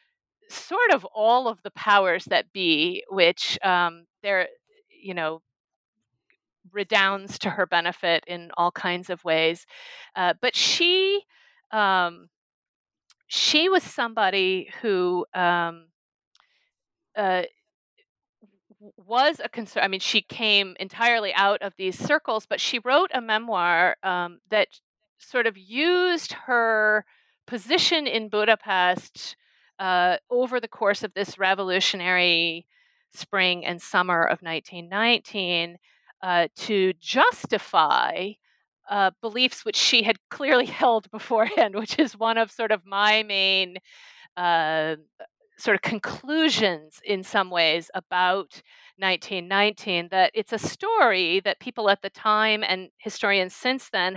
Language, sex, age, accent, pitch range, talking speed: English, female, 40-59, American, 185-245 Hz, 125 wpm